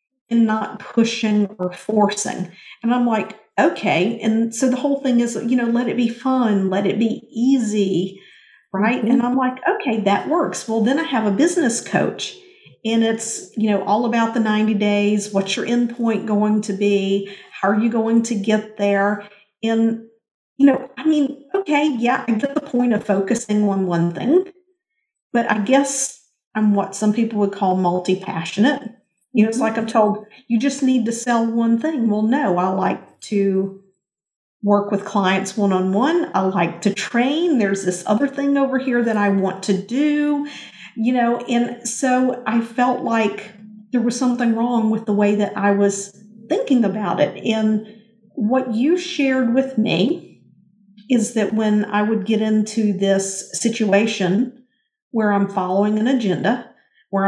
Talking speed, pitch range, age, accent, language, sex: 175 wpm, 205-245 Hz, 50-69, American, English, female